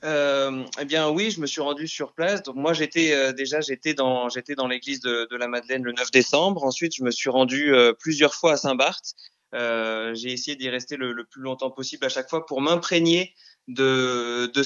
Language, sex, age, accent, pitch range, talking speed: French, male, 20-39, French, 130-165 Hz, 220 wpm